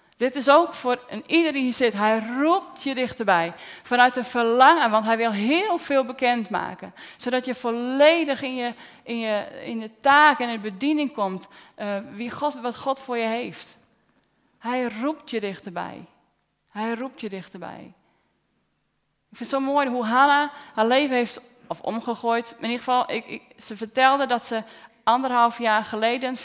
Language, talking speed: Dutch, 155 wpm